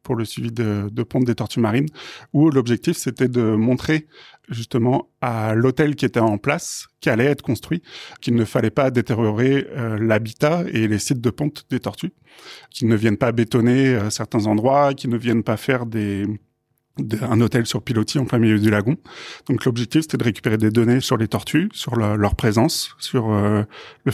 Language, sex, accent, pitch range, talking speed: French, male, French, 110-135 Hz, 195 wpm